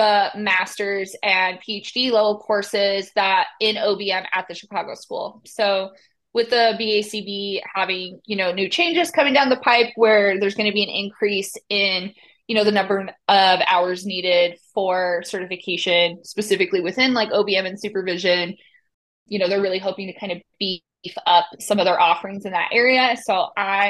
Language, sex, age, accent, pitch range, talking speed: English, female, 20-39, American, 190-225 Hz, 170 wpm